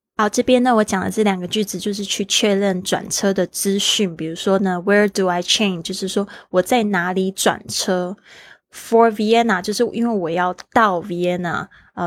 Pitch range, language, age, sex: 180-210 Hz, Chinese, 20-39, female